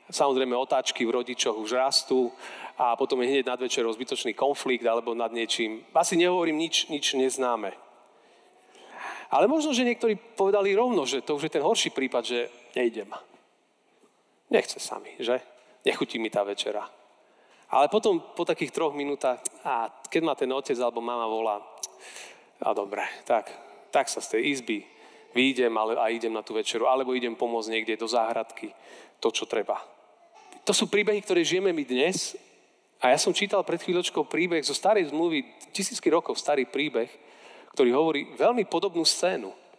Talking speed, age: 160 wpm, 40-59